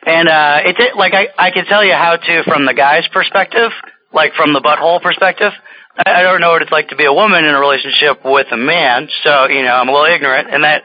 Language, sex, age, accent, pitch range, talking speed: English, male, 30-49, American, 135-175 Hz, 255 wpm